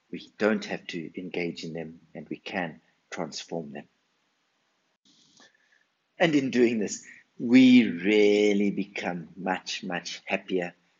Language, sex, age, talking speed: English, male, 50-69, 120 wpm